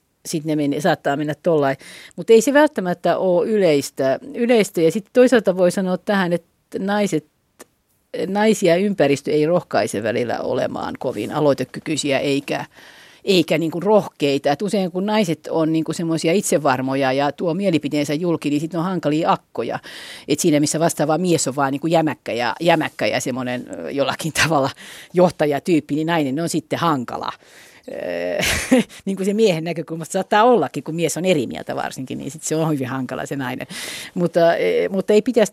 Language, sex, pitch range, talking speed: Finnish, female, 145-195 Hz, 160 wpm